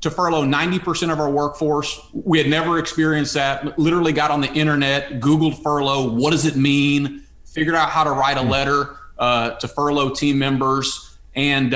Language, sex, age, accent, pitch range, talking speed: English, male, 30-49, American, 130-170 Hz, 180 wpm